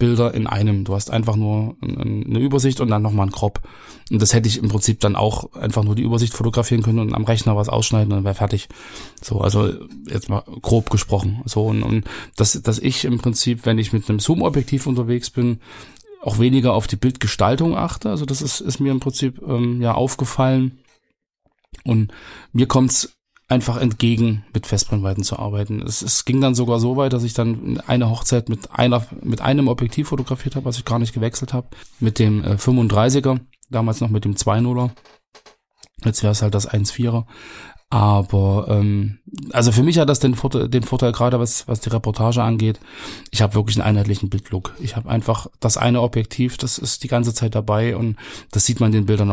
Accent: German